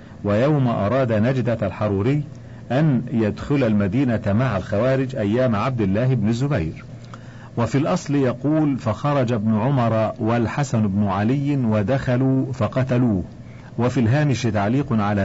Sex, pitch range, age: male, 105-130 Hz, 50-69